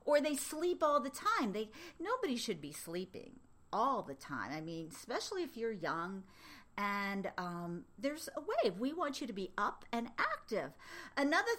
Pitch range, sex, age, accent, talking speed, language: 205-290 Hz, female, 50-69, American, 175 wpm, English